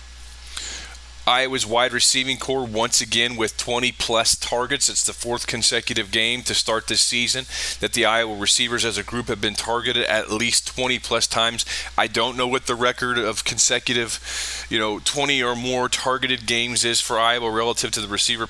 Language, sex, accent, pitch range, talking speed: English, male, American, 105-120 Hz, 180 wpm